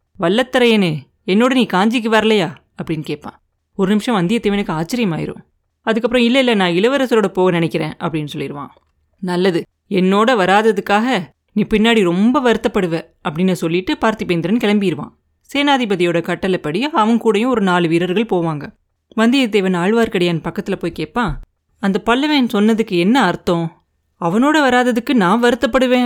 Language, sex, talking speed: Tamil, female, 120 wpm